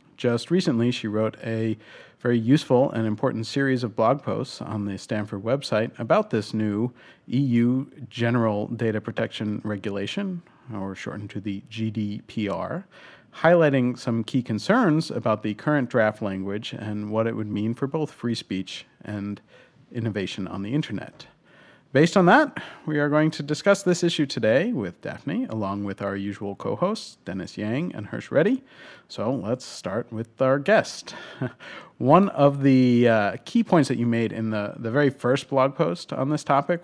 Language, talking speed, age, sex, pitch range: English, 165 wpm, 40-59, male, 110-140 Hz